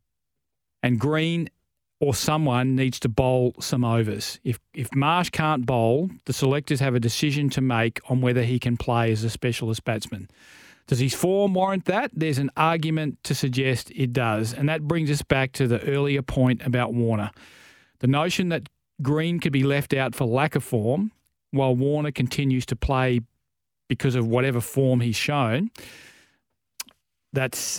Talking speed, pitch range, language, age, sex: 165 wpm, 125-145 Hz, English, 40-59, male